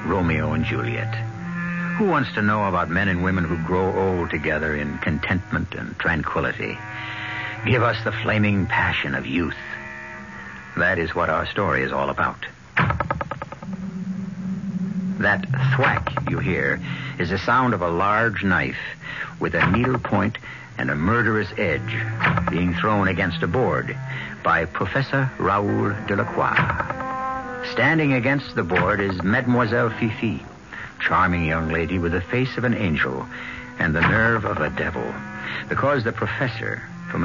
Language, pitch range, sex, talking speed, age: English, 90-135 Hz, male, 140 wpm, 60-79